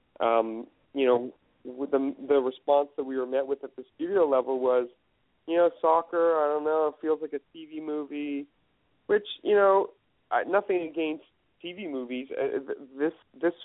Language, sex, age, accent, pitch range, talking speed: English, male, 40-59, American, 135-160 Hz, 175 wpm